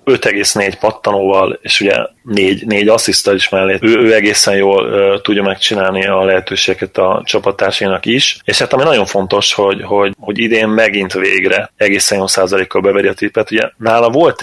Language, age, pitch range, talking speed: Hungarian, 30-49, 95-110 Hz, 165 wpm